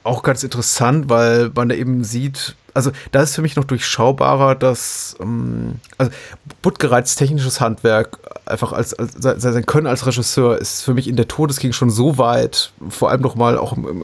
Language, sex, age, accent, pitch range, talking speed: German, male, 30-49, German, 115-135 Hz, 180 wpm